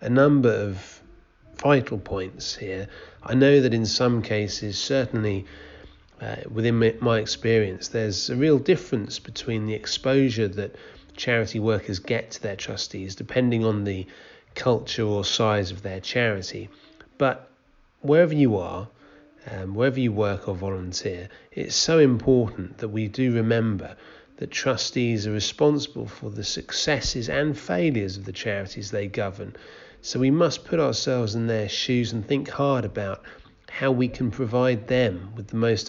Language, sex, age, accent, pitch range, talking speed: English, male, 30-49, British, 100-130 Hz, 150 wpm